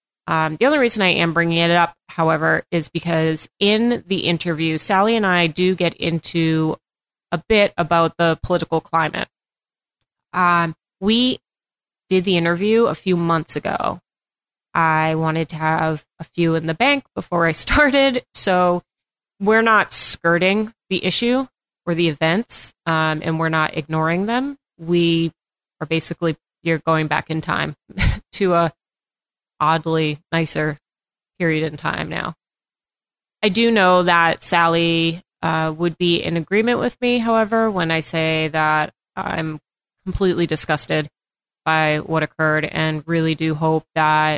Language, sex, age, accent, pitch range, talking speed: English, female, 30-49, American, 160-190 Hz, 145 wpm